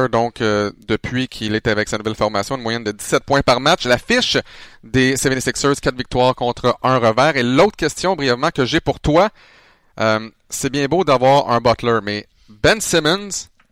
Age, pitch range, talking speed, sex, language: 30-49, 120-155 Hz, 190 wpm, male, French